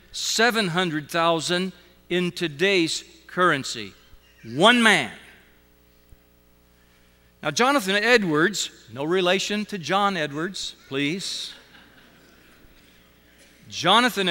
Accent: American